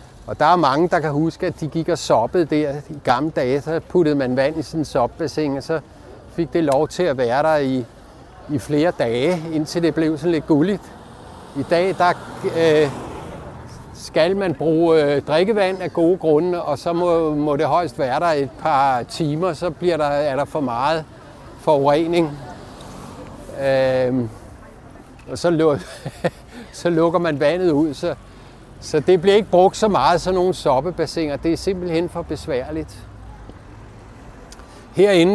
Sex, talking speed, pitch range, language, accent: male, 165 wpm, 130-165 Hz, Danish, native